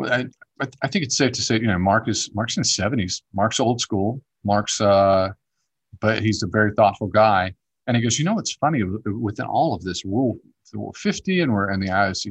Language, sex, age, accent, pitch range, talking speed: English, male, 40-59, American, 100-120 Hz, 215 wpm